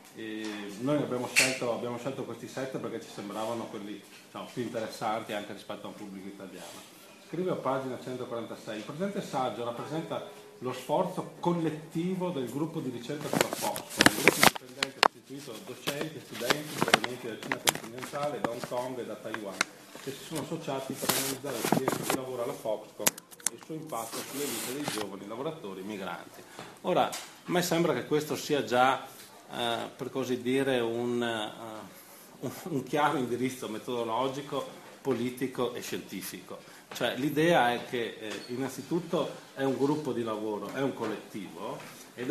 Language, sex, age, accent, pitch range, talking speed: Italian, male, 40-59, native, 120-150 Hz, 160 wpm